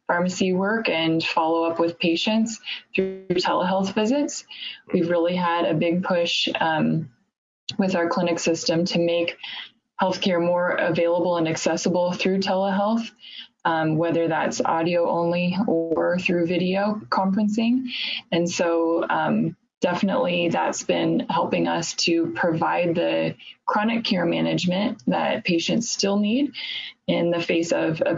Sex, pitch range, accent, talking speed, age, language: female, 170-205 Hz, American, 130 wpm, 20-39, Italian